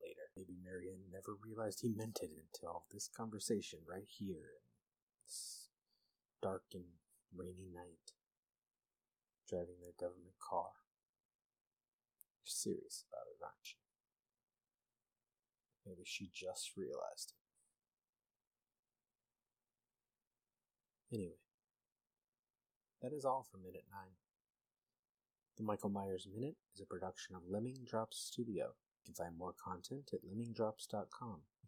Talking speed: 115 wpm